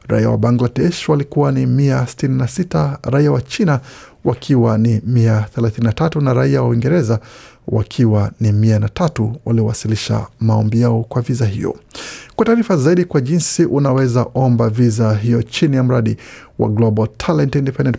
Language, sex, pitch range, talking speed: Swahili, male, 115-140 Hz, 140 wpm